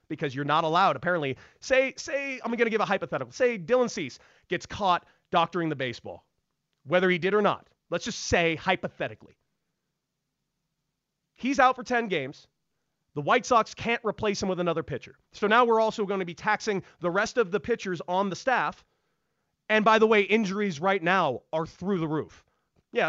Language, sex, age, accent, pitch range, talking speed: English, male, 30-49, American, 175-255 Hz, 185 wpm